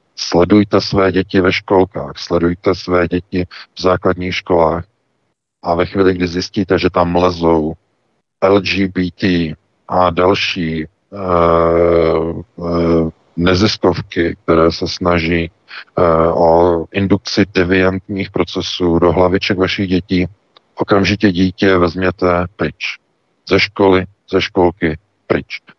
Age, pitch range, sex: 50-69, 85-95 Hz, male